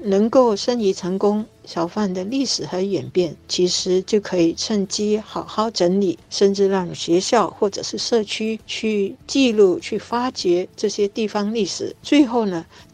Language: Chinese